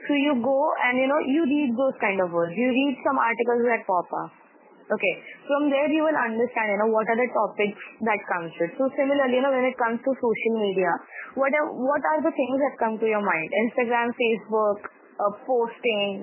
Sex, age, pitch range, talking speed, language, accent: female, 20-39, 220-275 Hz, 220 wpm, Hindi, native